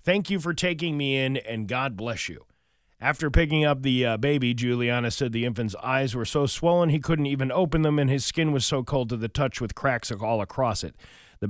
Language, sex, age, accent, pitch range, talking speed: English, male, 40-59, American, 105-135 Hz, 230 wpm